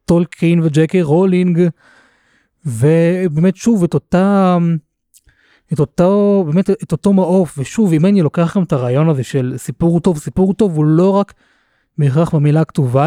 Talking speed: 140 wpm